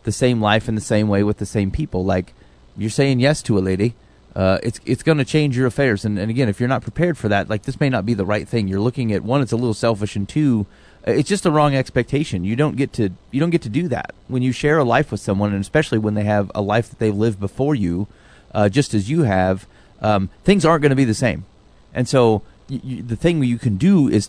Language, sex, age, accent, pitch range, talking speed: English, male, 30-49, American, 100-125 Hz, 270 wpm